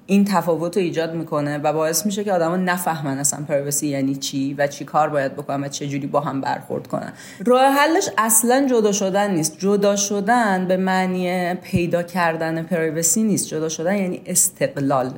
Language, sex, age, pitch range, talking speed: Persian, female, 30-49, 165-210 Hz, 180 wpm